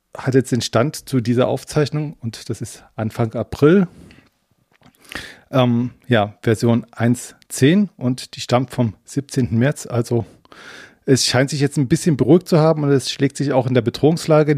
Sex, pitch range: male, 115-135 Hz